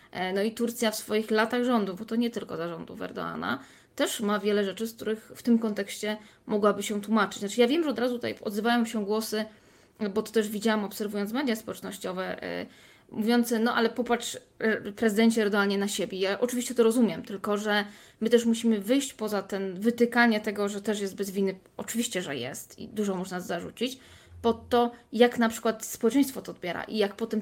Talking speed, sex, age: 195 wpm, female, 20-39